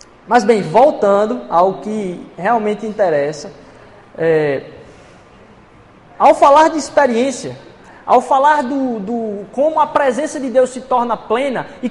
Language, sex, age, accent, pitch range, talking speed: Portuguese, male, 20-39, Brazilian, 250-345 Hz, 115 wpm